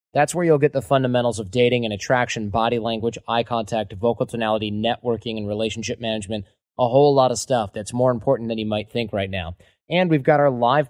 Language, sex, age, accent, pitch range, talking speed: English, male, 20-39, American, 115-135 Hz, 215 wpm